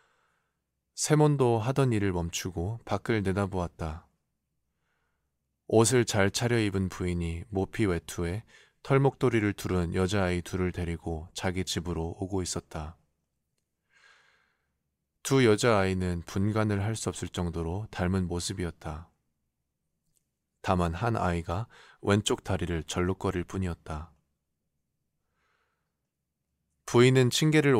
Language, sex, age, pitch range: Korean, male, 20-39, 80-105 Hz